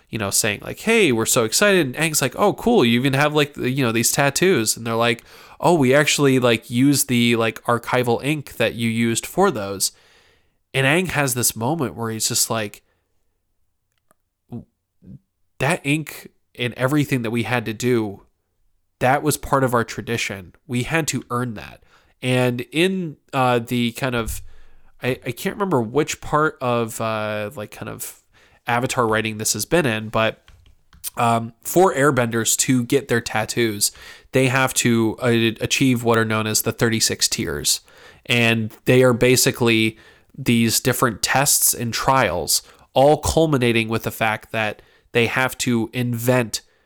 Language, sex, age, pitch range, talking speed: English, male, 20-39, 110-130 Hz, 165 wpm